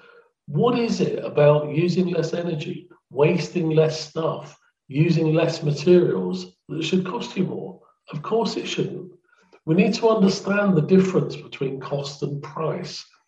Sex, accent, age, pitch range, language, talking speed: male, British, 50-69, 155-195 Hz, English, 145 wpm